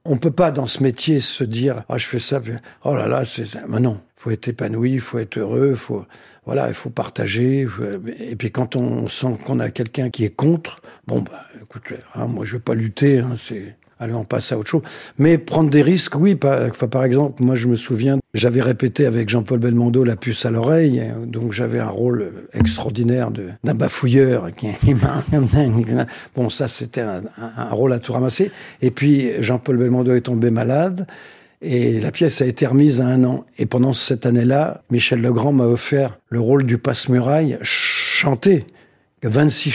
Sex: male